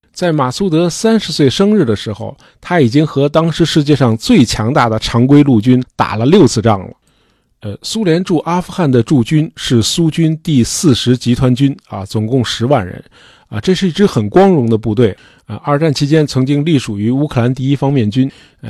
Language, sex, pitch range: Chinese, male, 115-165 Hz